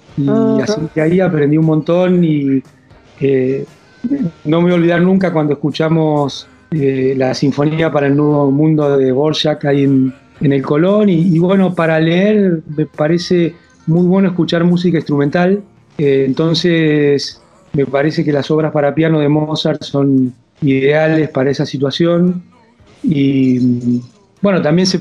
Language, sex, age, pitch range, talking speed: Spanish, male, 40-59, 140-170 Hz, 150 wpm